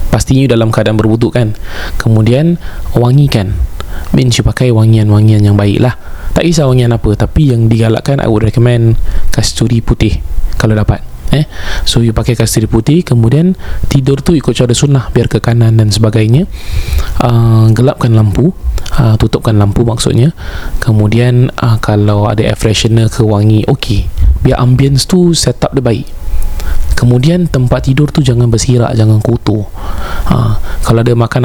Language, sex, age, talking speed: Malay, male, 20-39, 150 wpm